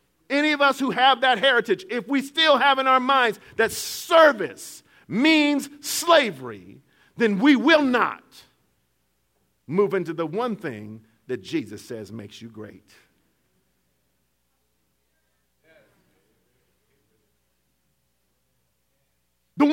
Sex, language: male, English